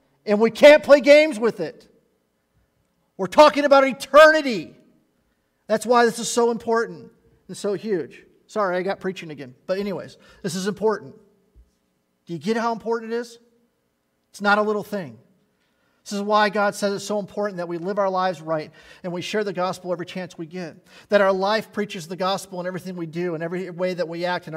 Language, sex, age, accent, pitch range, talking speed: English, male, 40-59, American, 155-210 Hz, 200 wpm